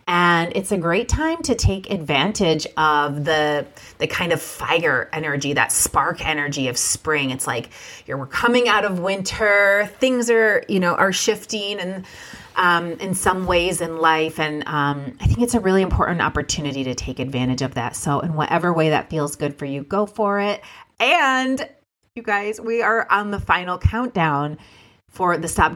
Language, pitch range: English, 150-195 Hz